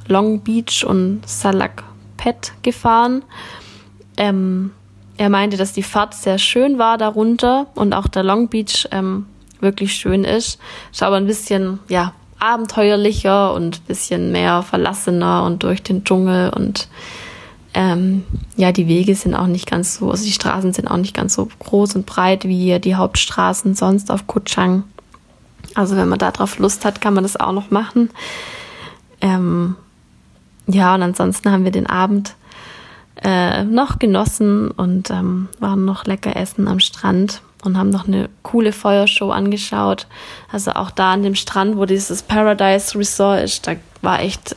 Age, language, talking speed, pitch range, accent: 10-29, German, 160 wpm, 180-205 Hz, German